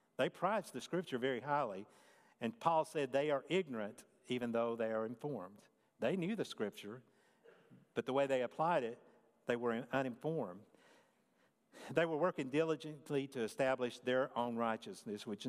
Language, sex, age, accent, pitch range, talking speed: English, male, 50-69, American, 110-145 Hz, 155 wpm